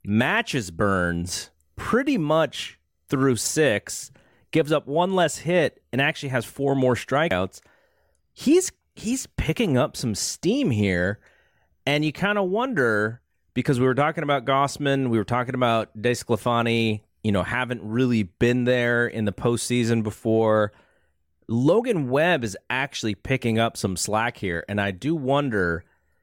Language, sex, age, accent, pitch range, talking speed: English, male, 30-49, American, 105-150 Hz, 145 wpm